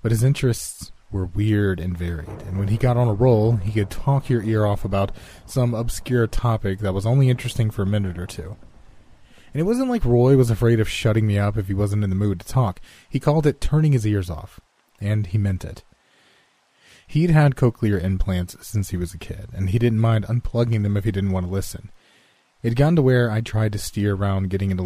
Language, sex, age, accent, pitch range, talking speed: English, male, 30-49, American, 95-115 Hz, 230 wpm